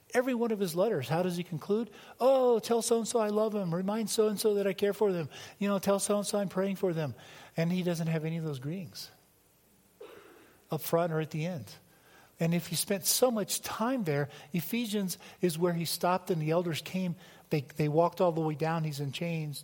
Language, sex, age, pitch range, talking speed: English, male, 50-69, 135-185 Hz, 215 wpm